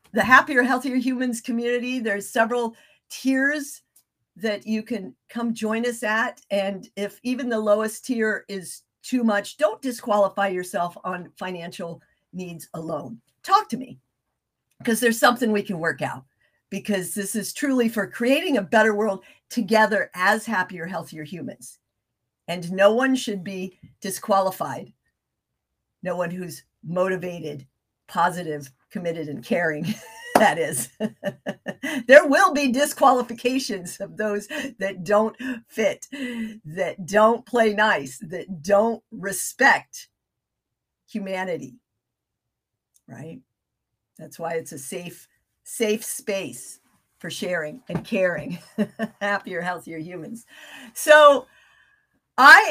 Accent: American